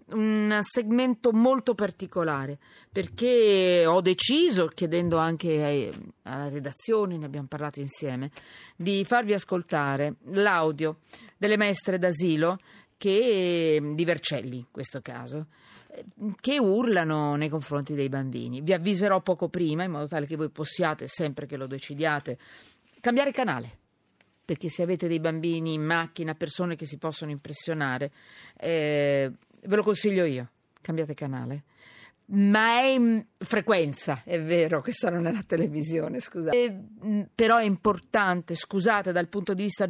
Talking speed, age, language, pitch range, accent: 135 wpm, 40-59, Italian, 145-195 Hz, native